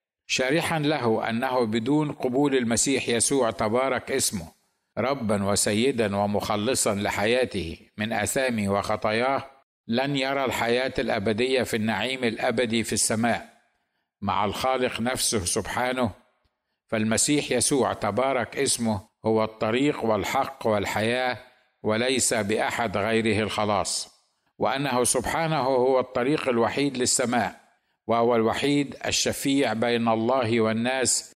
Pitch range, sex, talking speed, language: 110-130 Hz, male, 100 wpm, Arabic